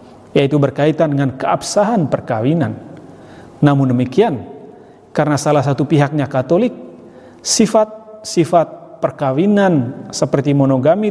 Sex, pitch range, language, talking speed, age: male, 135-185 Hz, Indonesian, 85 wpm, 40-59